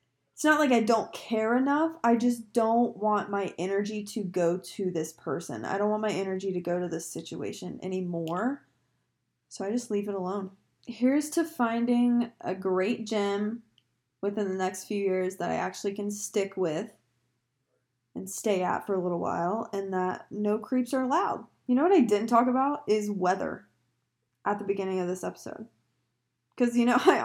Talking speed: 185 wpm